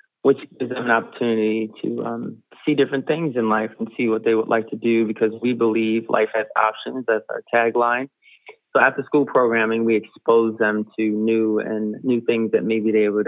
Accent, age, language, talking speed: American, 30-49, English, 200 wpm